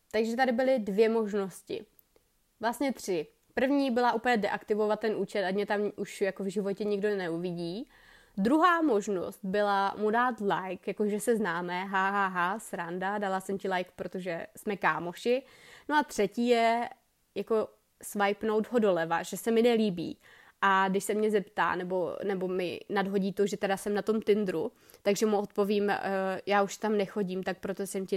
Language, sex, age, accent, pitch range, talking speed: Czech, female, 20-39, native, 190-220 Hz, 175 wpm